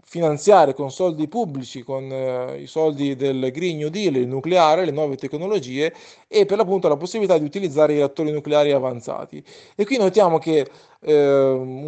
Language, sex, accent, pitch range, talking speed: Italian, male, native, 145-185 Hz, 165 wpm